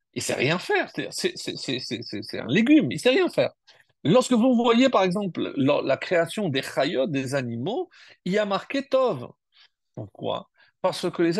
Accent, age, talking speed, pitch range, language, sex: French, 50-69, 205 wpm, 155-235 Hz, French, male